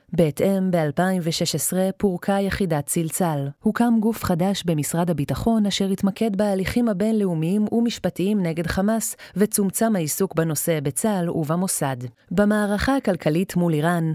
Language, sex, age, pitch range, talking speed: Hebrew, female, 30-49, 165-210 Hz, 110 wpm